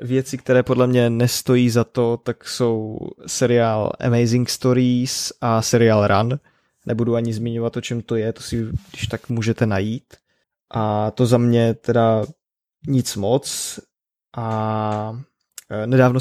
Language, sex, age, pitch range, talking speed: Czech, male, 20-39, 110-120 Hz, 135 wpm